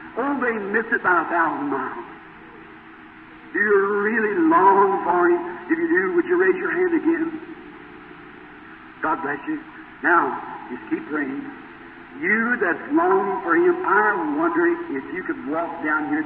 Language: English